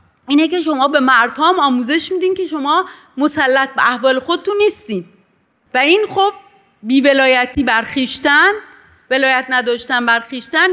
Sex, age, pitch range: female, 30-49, 230-315 Hz